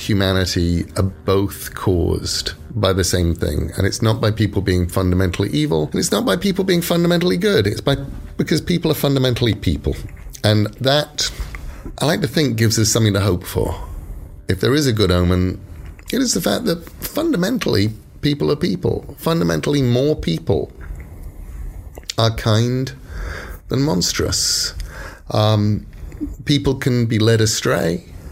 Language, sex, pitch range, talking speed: English, male, 90-120 Hz, 150 wpm